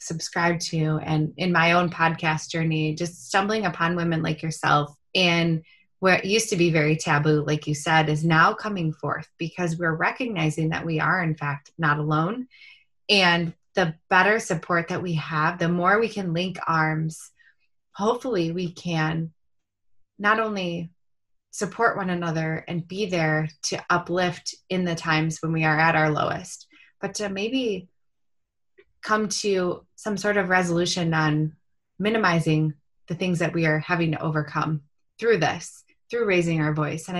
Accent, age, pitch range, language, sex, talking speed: American, 20-39, 160-190 Hz, English, female, 160 wpm